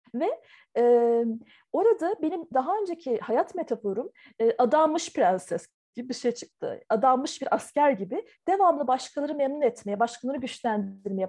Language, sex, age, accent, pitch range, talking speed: Turkish, female, 40-59, native, 230-330 Hz, 135 wpm